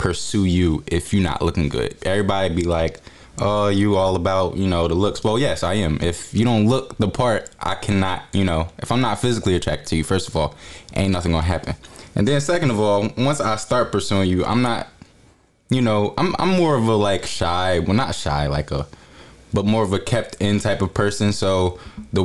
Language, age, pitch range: English, 20-39, 90-110 Hz